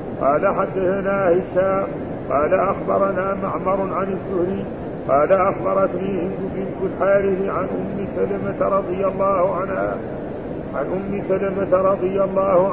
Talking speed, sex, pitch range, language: 110 wpm, male, 185-195 Hz, Arabic